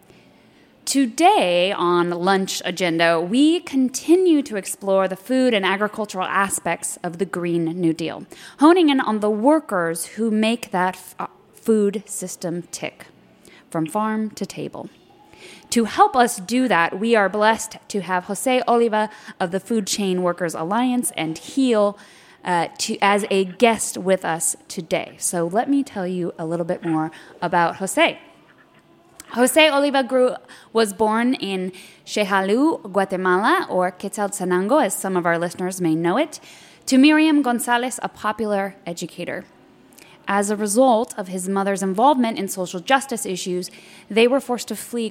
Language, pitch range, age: English, 180-235 Hz, 20-39